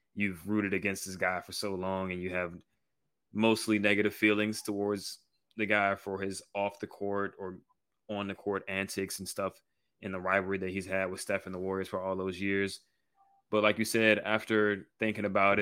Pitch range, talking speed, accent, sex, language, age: 95-105 Hz, 195 wpm, American, male, English, 20-39